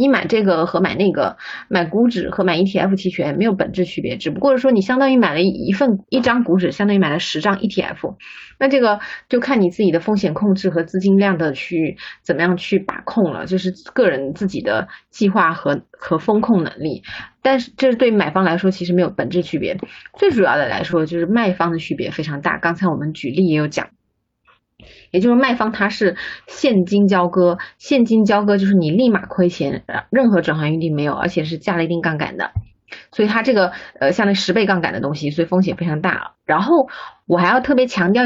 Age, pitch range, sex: 20-39, 170-210 Hz, female